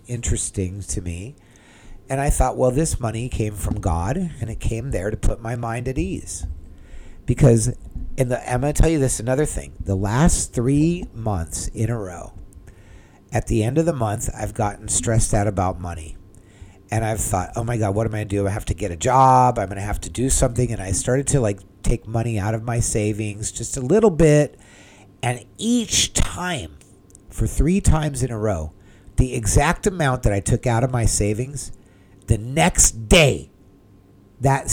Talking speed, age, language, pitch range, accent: 195 wpm, 50-69, English, 95-130 Hz, American